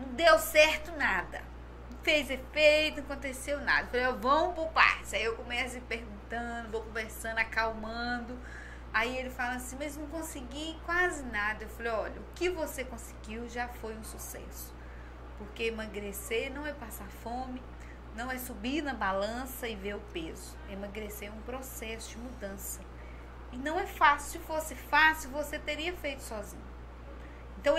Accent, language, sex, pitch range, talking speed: Brazilian, Portuguese, female, 215-300 Hz, 160 wpm